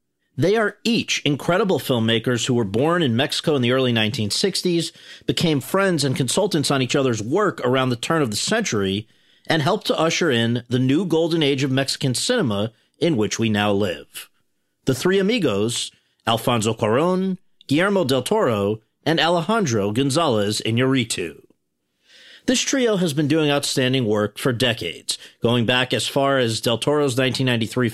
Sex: male